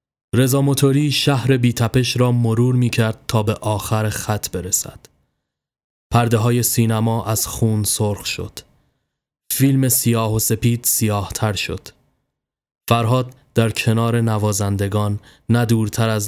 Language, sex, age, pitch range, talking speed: Persian, male, 20-39, 100-120 Hz, 120 wpm